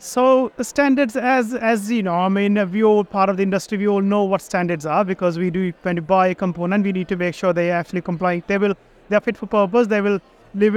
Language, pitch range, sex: English, 195-230 Hz, male